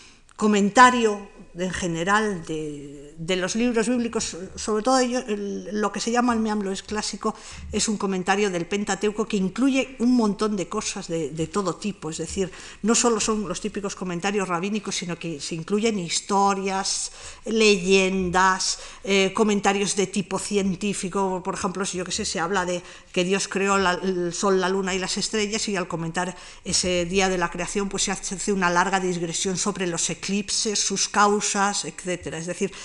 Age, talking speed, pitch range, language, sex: 50-69, 175 wpm, 185-225 Hz, Spanish, female